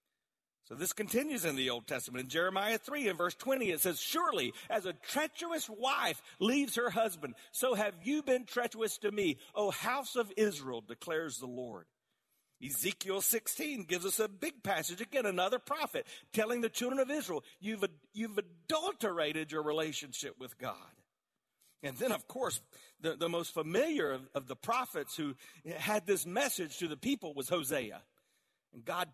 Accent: American